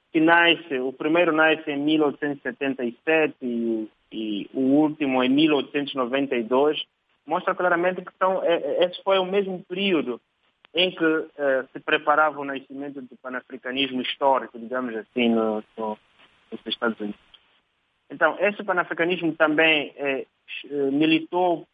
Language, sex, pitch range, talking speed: Portuguese, male, 125-155 Hz, 125 wpm